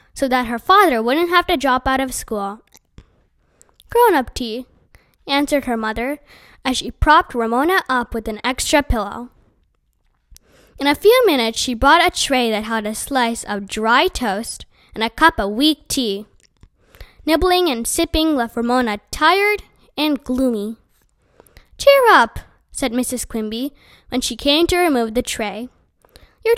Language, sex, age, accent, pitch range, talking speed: English, female, 10-29, American, 230-315 Hz, 150 wpm